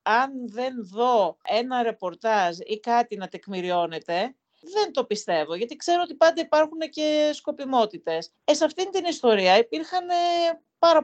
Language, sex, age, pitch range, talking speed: Greek, female, 50-69, 195-315 Hz, 140 wpm